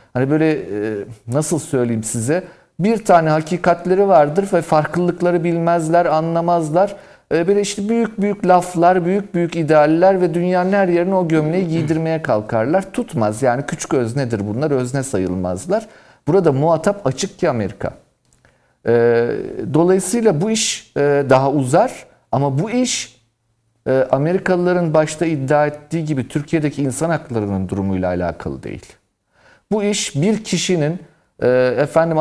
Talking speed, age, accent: 120 wpm, 50-69, native